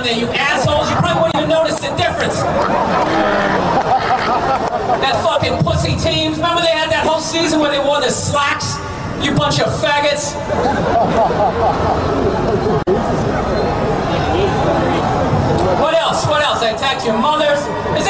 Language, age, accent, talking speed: English, 40-59, American, 125 wpm